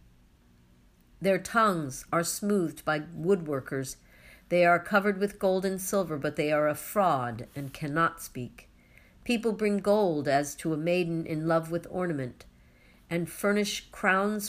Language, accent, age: English, American, 60-79